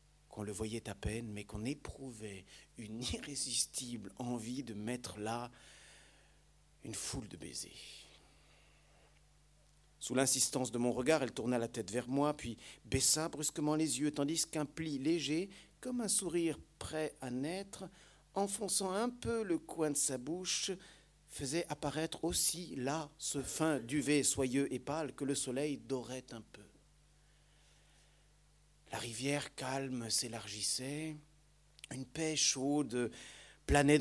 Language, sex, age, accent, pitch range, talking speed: French, male, 50-69, French, 125-155 Hz, 135 wpm